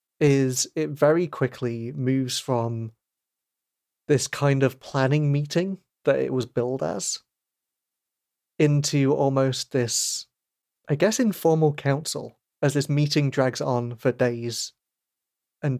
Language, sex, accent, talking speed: English, male, British, 120 wpm